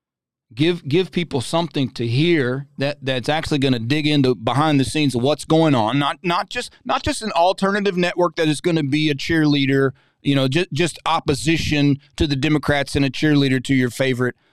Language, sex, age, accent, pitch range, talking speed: English, male, 30-49, American, 135-165 Hz, 200 wpm